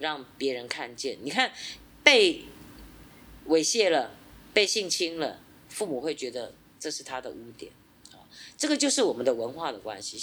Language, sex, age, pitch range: Chinese, female, 30-49, 150-225 Hz